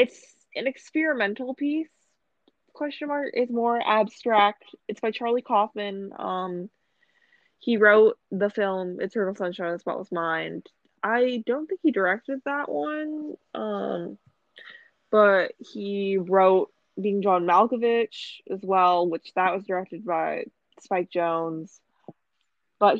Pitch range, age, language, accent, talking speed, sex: 185-245 Hz, 20-39, English, American, 125 wpm, female